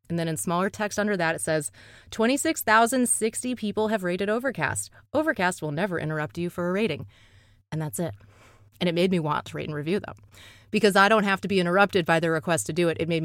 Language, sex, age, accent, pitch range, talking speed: English, female, 30-49, American, 150-205 Hz, 225 wpm